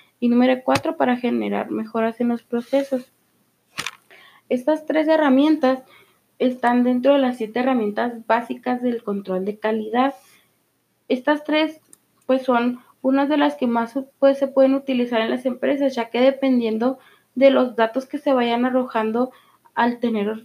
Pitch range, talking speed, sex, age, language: 220-265 Hz, 150 wpm, female, 20-39, Spanish